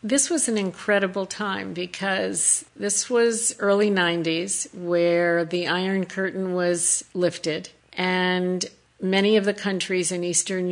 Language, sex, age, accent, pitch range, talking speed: English, female, 50-69, American, 170-195 Hz, 130 wpm